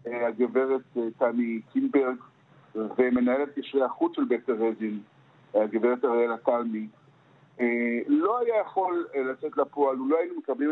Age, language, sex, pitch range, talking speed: 60-79, Hebrew, male, 120-160 Hz, 110 wpm